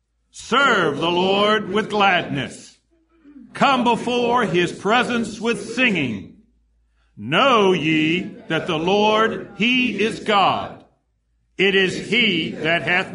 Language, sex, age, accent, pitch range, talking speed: English, male, 60-79, American, 155-220 Hz, 110 wpm